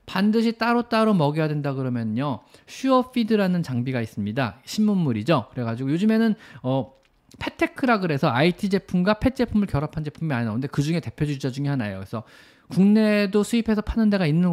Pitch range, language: 130-205 Hz, Korean